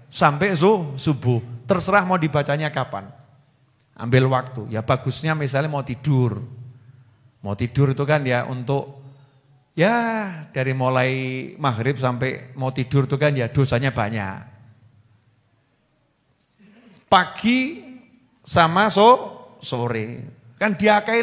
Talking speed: 105 wpm